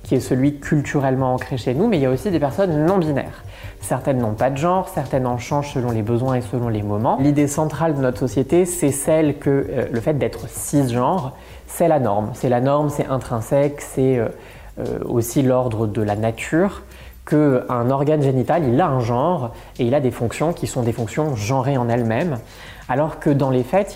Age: 20-39